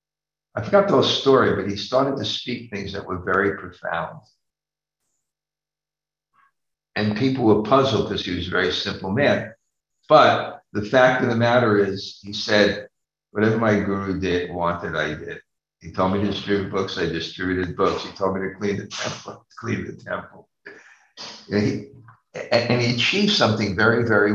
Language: English